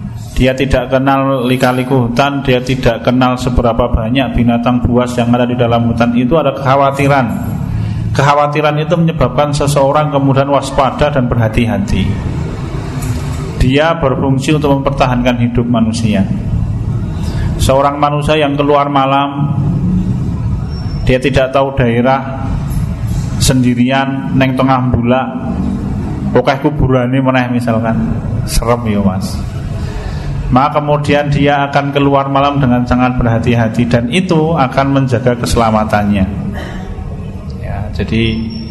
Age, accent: 30-49, native